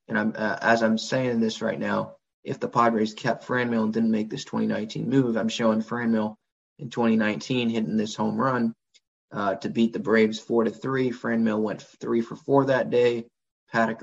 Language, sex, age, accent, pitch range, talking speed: English, male, 20-39, American, 110-135 Hz, 215 wpm